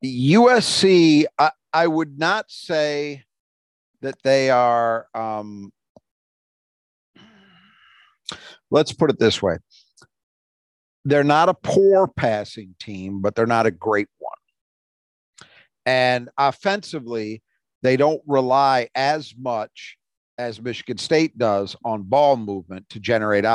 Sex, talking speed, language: male, 110 wpm, English